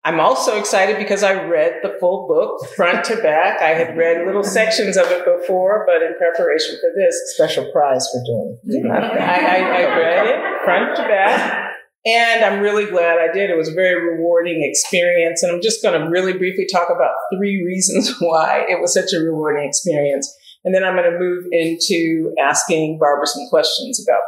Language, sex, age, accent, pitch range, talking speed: English, female, 50-69, American, 160-210 Hz, 195 wpm